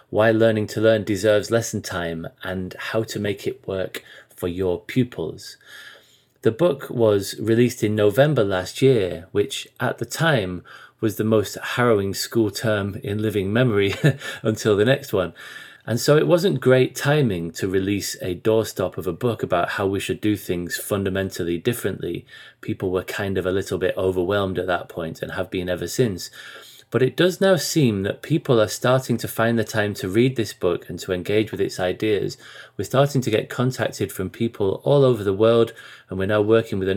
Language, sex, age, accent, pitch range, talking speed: English, male, 30-49, British, 95-120 Hz, 190 wpm